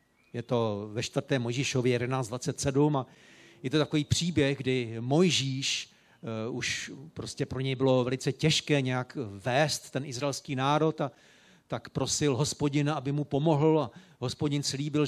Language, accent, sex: Czech, native, male